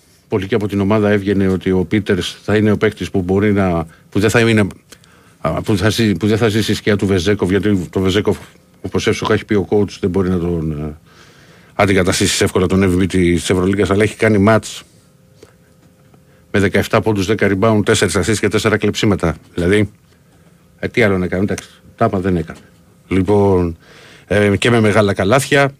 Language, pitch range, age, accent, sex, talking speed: Greek, 95-115 Hz, 50-69, native, male, 165 wpm